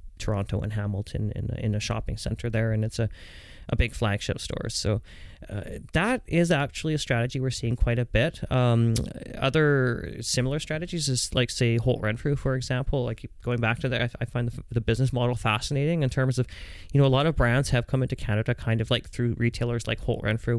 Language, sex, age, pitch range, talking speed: English, male, 30-49, 110-125 Hz, 210 wpm